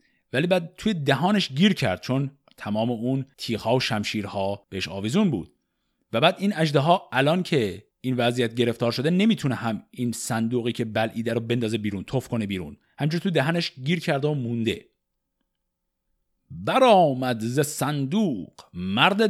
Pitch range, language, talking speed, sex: 110-165 Hz, Persian, 160 wpm, male